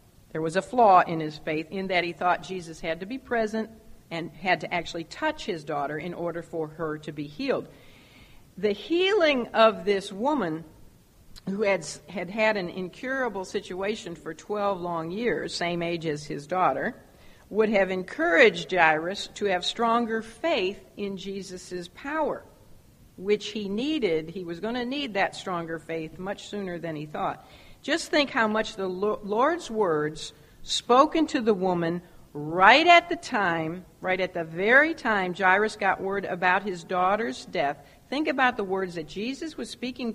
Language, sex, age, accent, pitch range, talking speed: English, female, 50-69, American, 170-235 Hz, 170 wpm